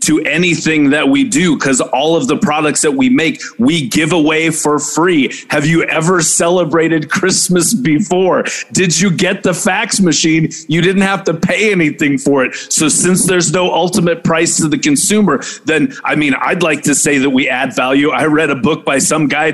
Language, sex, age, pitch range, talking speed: English, male, 30-49, 150-190 Hz, 200 wpm